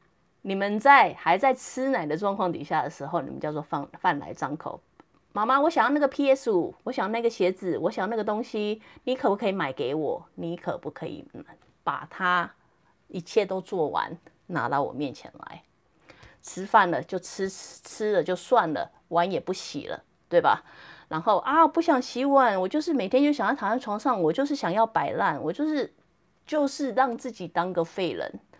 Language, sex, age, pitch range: English, female, 30-49, 170-260 Hz